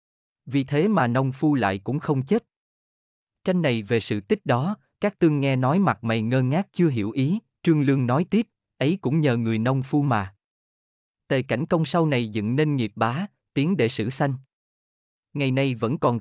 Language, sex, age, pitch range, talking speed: Vietnamese, male, 20-39, 115-160 Hz, 200 wpm